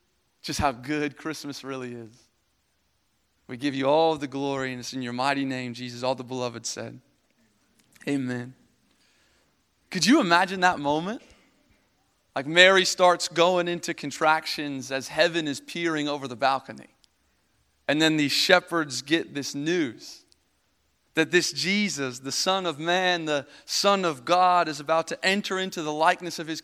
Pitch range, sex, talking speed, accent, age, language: 140-190 Hz, male, 155 wpm, American, 30-49, English